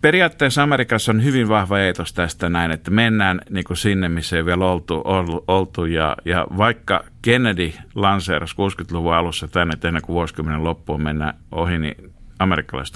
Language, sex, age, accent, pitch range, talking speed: Finnish, male, 50-69, native, 85-110 Hz, 160 wpm